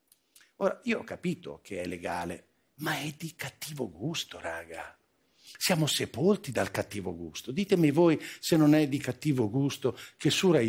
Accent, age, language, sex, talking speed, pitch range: native, 60-79, Italian, male, 165 wpm, 125-190 Hz